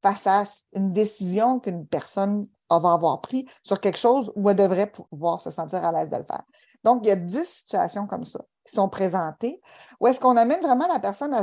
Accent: Canadian